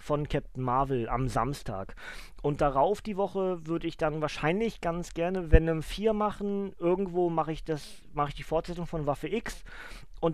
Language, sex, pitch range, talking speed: German, male, 130-160 Hz, 175 wpm